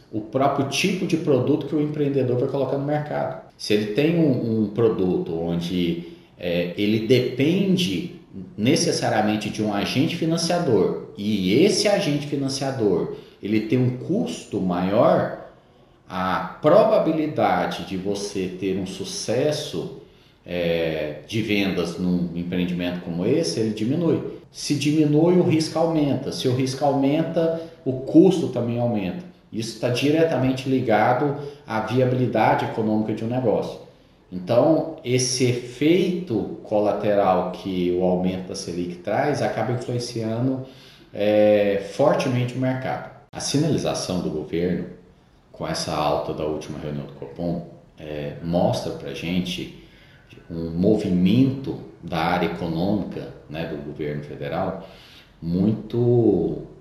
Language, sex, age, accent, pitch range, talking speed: Portuguese, male, 40-59, Brazilian, 90-140 Hz, 120 wpm